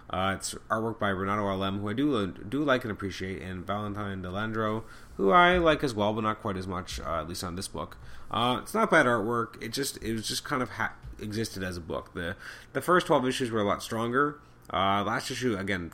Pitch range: 95-120 Hz